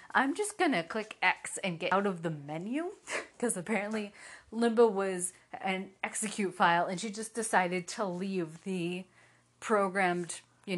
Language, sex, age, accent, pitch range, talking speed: English, female, 30-49, American, 175-225 Hz, 155 wpm